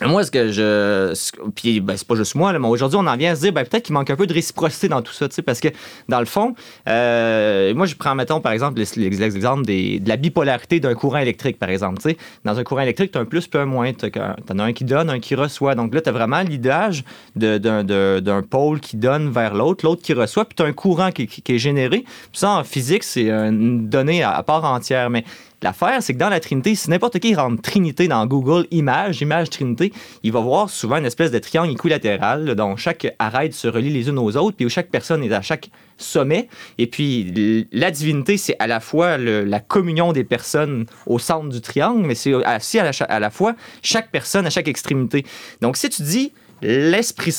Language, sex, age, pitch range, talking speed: French, male, 30-49, 115-175 Hz, 240 wpm